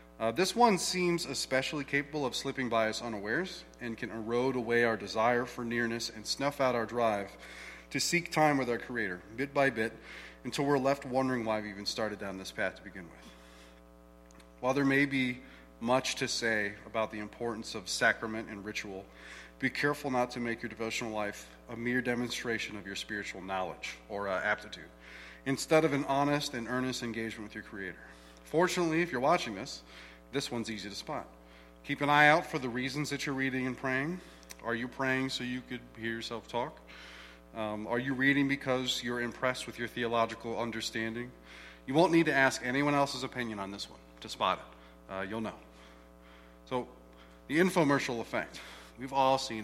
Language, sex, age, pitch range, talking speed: English, male, 30-49, 95-130 Hz, 185 wpm